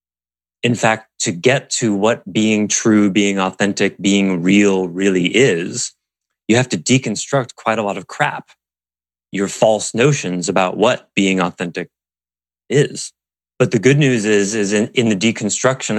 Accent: American